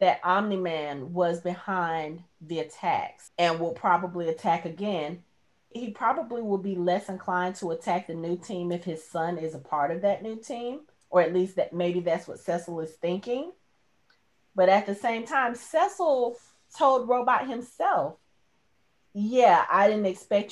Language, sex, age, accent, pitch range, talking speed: English, female, 30-49, American, 175-230 Hz, 160 wpm